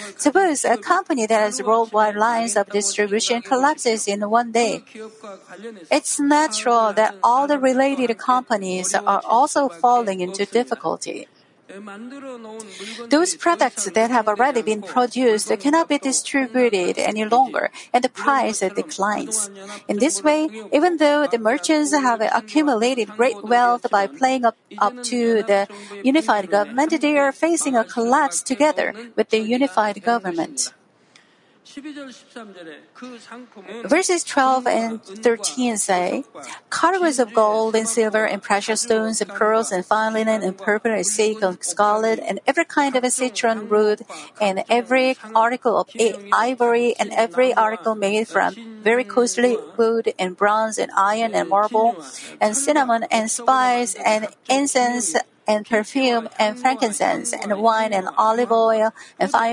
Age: 50-69